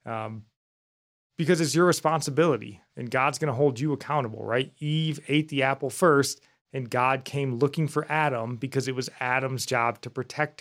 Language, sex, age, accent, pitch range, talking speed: English, male, 20-39, American, 120-150 Hz, 175 wpm